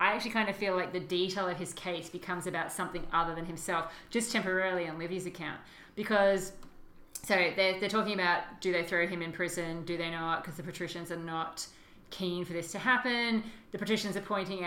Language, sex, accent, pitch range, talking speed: English, female, Australian, 165-190 Hz, 210 wpm